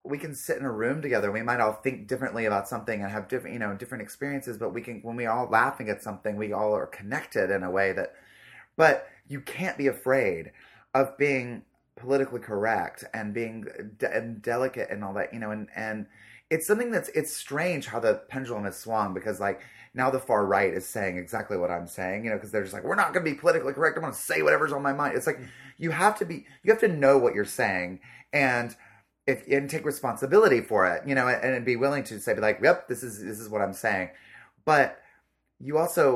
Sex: male